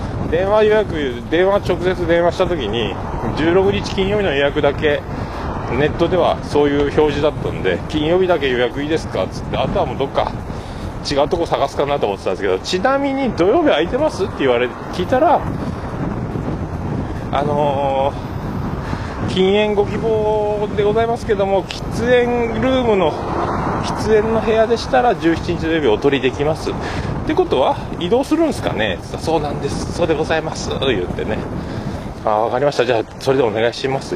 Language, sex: Japanese, male